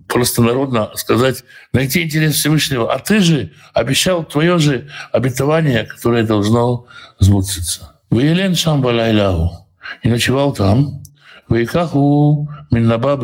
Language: Russian